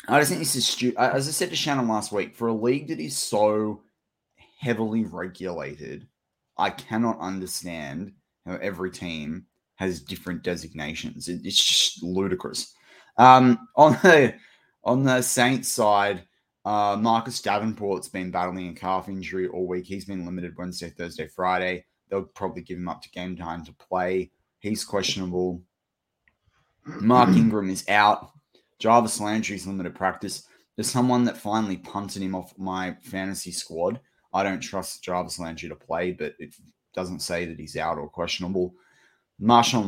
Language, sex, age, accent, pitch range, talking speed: English, male, 20-39, Australian, 90-110 Hz, 155 wpm